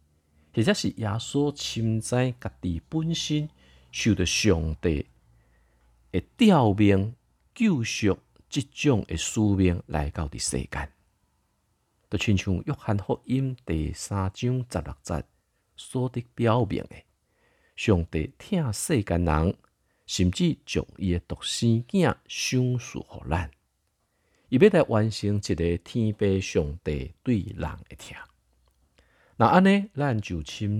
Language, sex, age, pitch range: Chinese, male, 50-69, 75-125 Hz